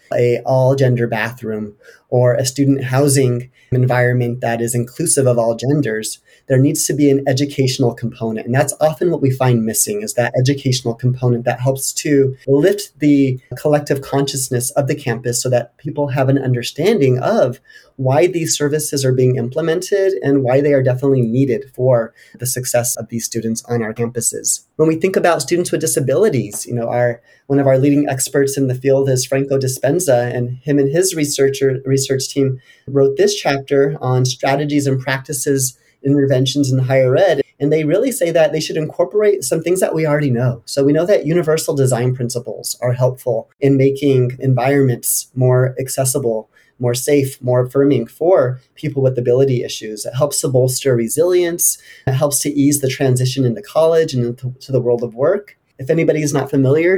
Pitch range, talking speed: 125-145 Hz, 180 wpm